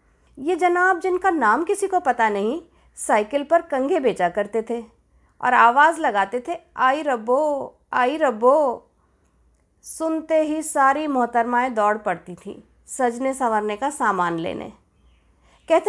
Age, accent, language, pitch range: 50-69, native, Hindi, 240-330 Hz